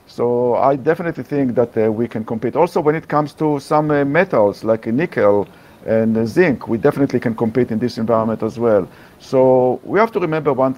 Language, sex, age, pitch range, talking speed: English, male, 50-69, 120-145 Hz, 200 wpm